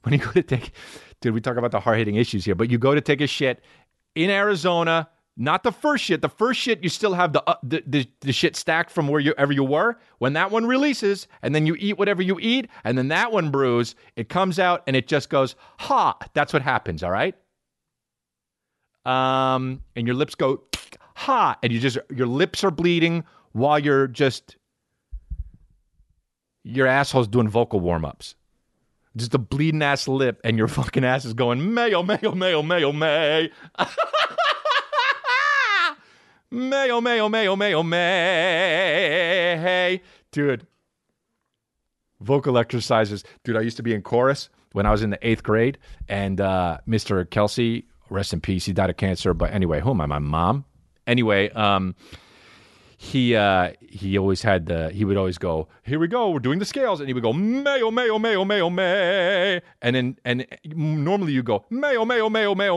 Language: English